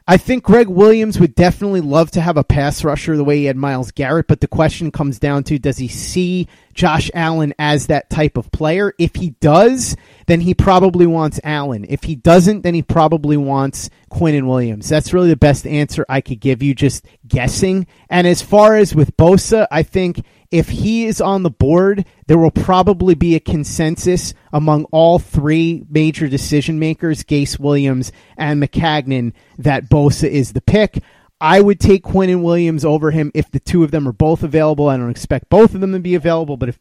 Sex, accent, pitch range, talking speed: male, American, 135-170 Hz, 205 wpm